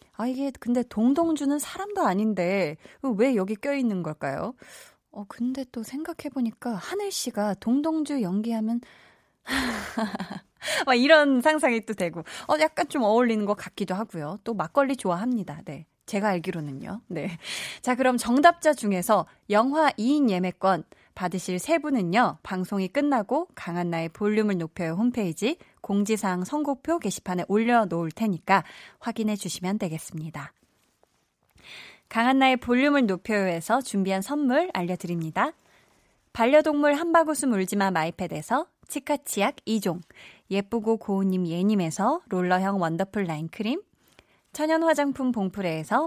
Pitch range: 185-260 Hz